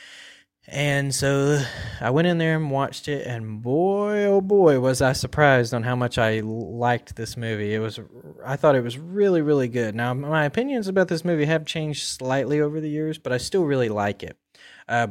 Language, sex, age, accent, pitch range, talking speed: English, male, 20-39, American, 110-135 Hz, 205 wpm